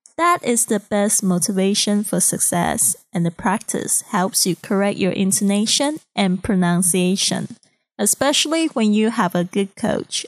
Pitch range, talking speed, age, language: 195-240 Hz, 140 wpm, 20-39, English